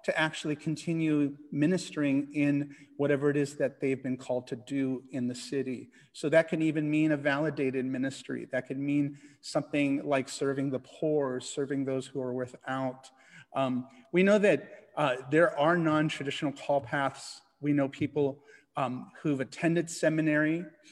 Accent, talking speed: American, 160 wpm